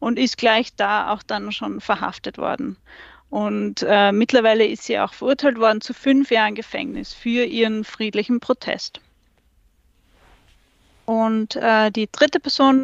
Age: 40-59